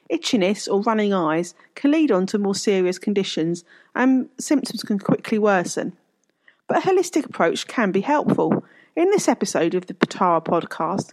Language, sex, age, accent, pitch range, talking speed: English, female, 40-59, British, 195-275 Hz, 160 wpm